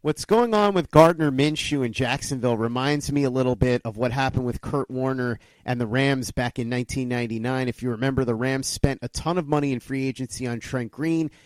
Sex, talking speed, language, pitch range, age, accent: male, 215 wpm, English, 125-145 Hz, 30-49, American